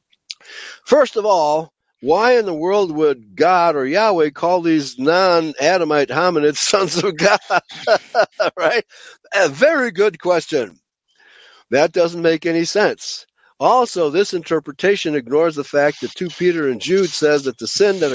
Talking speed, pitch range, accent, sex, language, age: 145 wpm, 145-195 Hz, American, male, English, 60-79